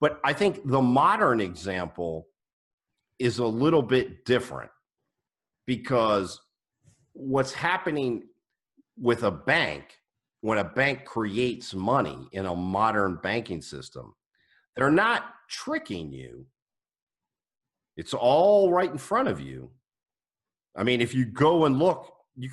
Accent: American